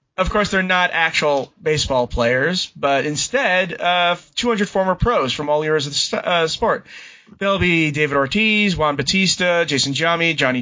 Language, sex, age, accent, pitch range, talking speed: English, male, 30-49, American, 150-185 Hz, 170 wpm